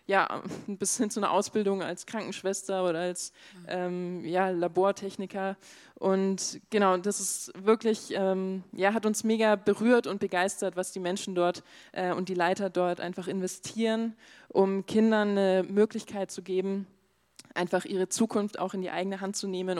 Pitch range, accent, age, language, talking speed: 185-210 Hz, German, 20-39, German, 160 wpm